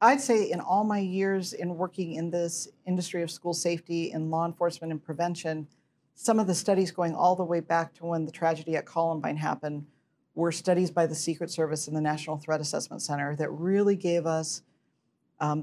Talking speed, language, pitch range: 200 wpm, English, 160-180 Hz